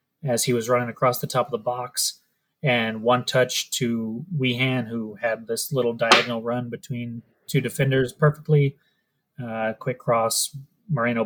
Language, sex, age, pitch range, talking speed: English, male, 30-49, 115-140 Hz, 155 wpm